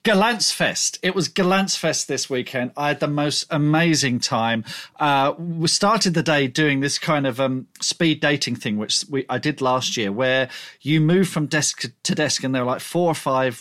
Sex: male